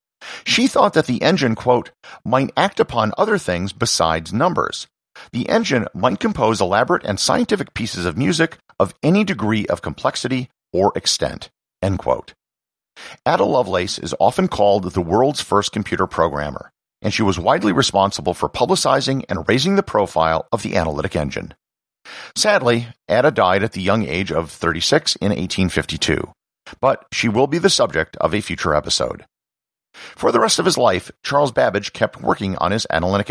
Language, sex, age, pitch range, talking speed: English, male, 50-69, 90-130 Hz, 165 wpm